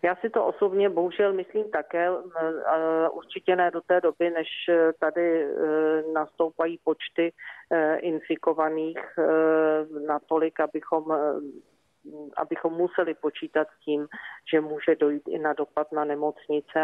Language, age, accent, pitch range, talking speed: Czech, 40-59, native, 155-170 Hz, 115 wpm